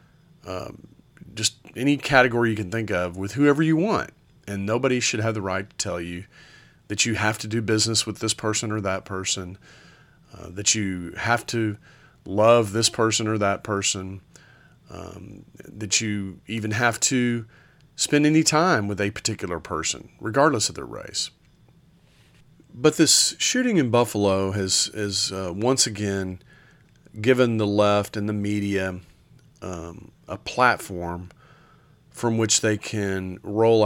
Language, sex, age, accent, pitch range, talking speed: English, male, 40-59, American, 95-120 Hz, 150 wpm